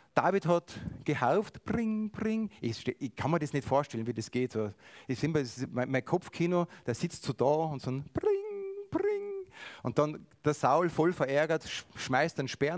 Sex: male